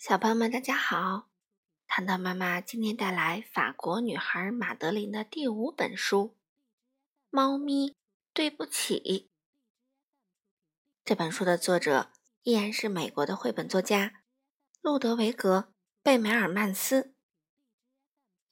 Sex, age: female, 20-39